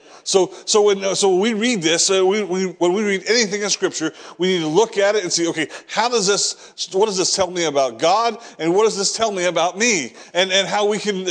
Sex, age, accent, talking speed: male, 40-59, American, 260 wpm